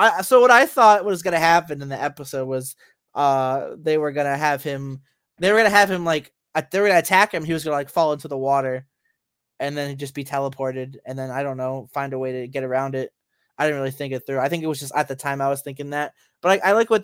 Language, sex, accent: English, male, American